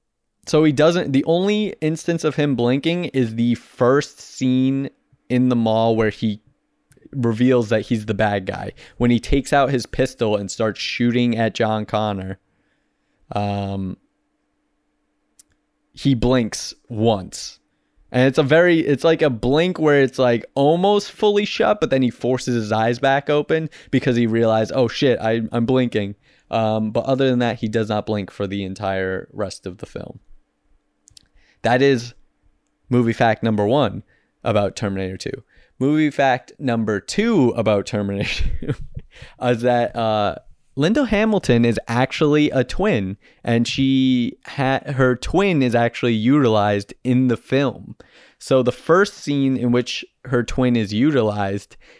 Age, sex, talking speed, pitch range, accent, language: 20-39, male, 150 wpm, 110-135 Hz, American, English